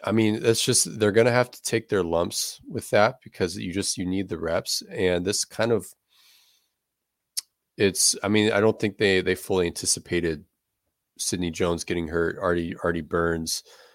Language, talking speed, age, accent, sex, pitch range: English, 180 wpm, 30-49, American, male, 85-110 Hz